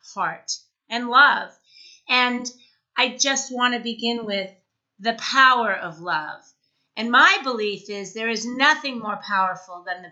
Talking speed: 150 wpm